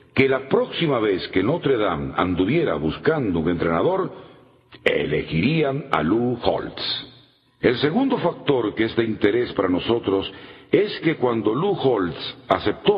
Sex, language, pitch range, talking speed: male, Spanish, 110-155 Hz, 140 wpm